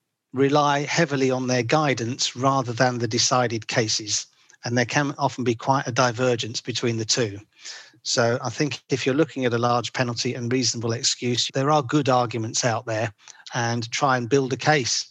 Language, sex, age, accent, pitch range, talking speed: English, male, 40-59, British, 120-140 Hz, 185 wpm